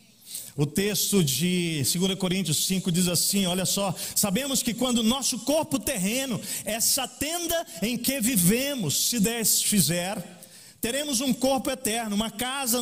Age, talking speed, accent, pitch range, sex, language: 40-59, 140 wpm, Brazilian, 185-245 Hz, male, Portuguese